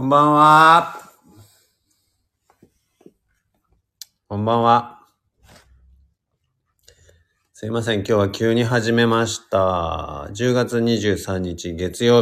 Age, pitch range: 40-59, 95-110 Hz